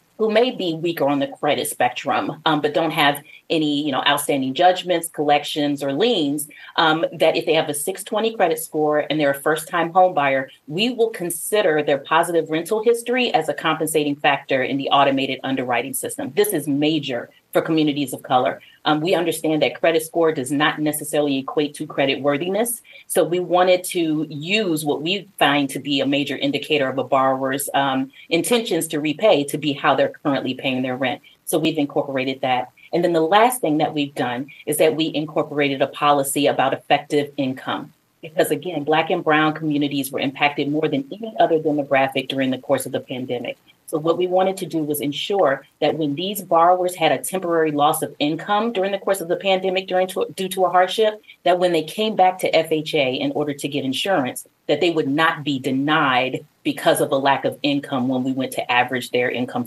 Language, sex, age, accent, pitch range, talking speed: English, female, 30-49, American, 140-175 Hz, 200 wpm